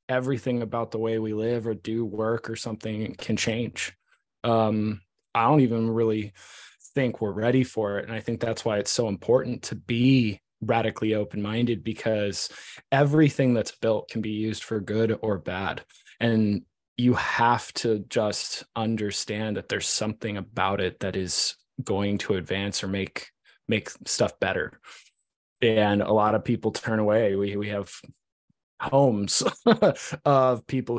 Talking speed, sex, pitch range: 155 wpm, male, 105-120 Hz